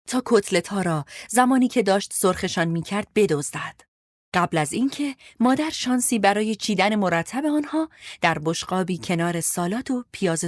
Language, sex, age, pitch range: Persian, female, 30-49, 165-235 Hz